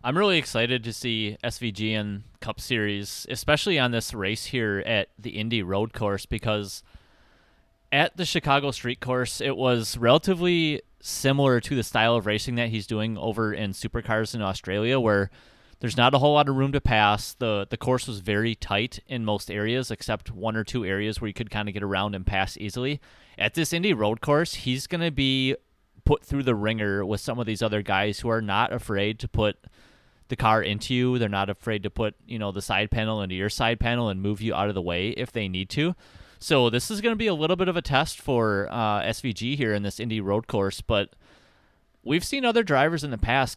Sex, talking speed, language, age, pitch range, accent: male, 220 wpm, English, 30-49, 105-130 Hz, American